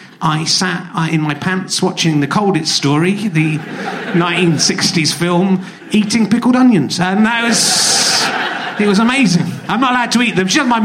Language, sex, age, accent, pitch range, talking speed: English, male, 30-49, British, 175-220 Hz, 165 wpm